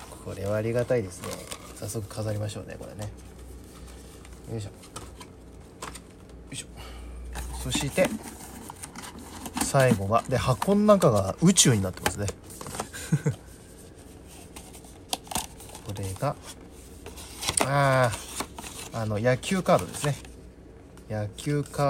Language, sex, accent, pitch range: Japanese, male, native, 90-115 Hz